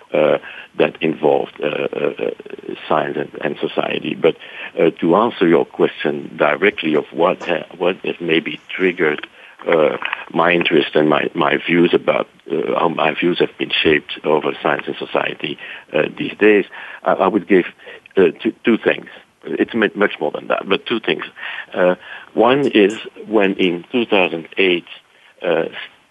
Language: English